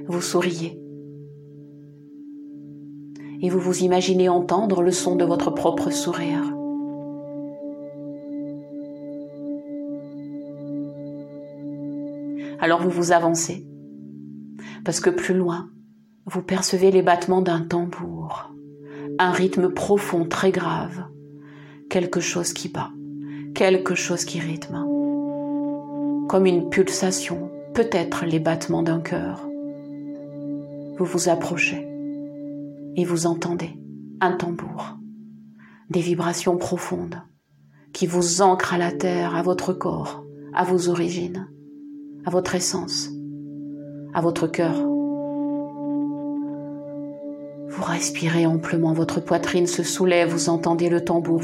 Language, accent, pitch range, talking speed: French, French, 145-185 Hz, 105 wpm